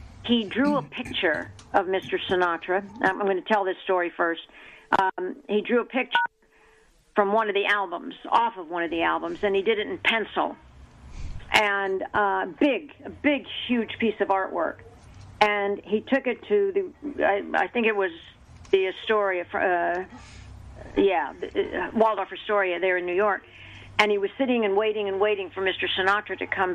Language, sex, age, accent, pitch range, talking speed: English, female, 50-69, American, 185-240 Hz, 180 wpm